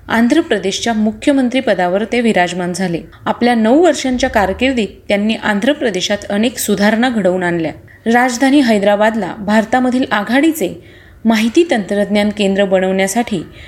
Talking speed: 100 wpm